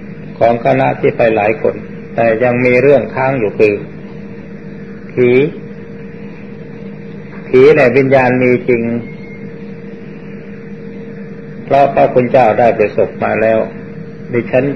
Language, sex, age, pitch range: Thai, male, 60-79, 125-210 Hz